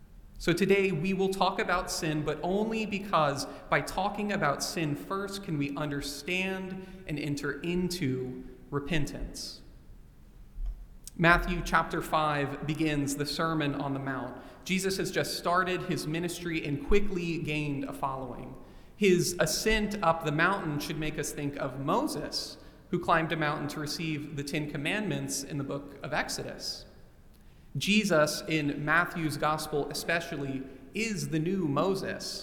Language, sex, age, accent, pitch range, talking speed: English, male, 30-49, American, 145-180 Hz, 140 wpm